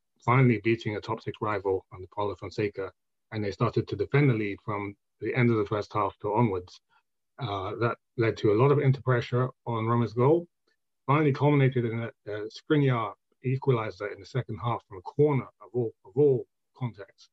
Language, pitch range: English, 105-125 Hz